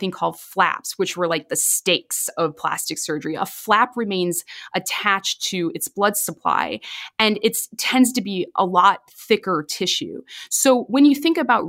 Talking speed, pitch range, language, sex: 165 wpm, 170-225 Hz, English, female